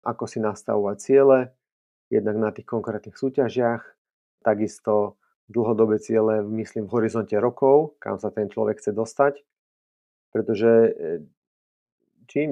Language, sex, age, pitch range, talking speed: Slovak, male, 30-49, 105-125 Hz, 115 wpm